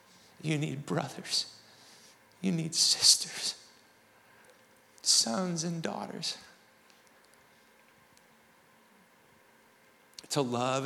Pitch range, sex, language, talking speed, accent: 125-145 Hz, male, English, 60 wpm, American